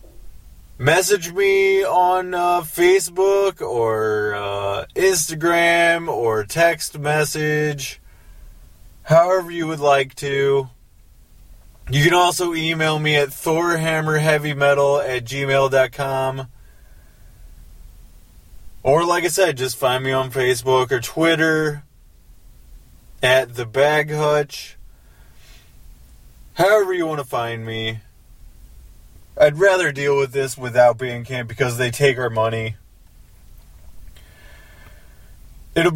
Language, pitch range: English, 110-155 Hz